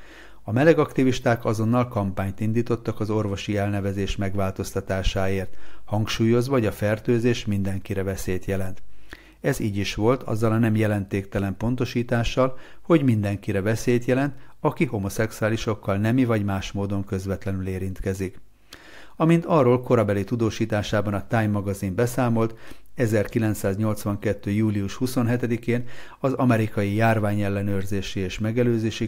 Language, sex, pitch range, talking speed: Hungarian, male, 100-120 Hz, 110 wpm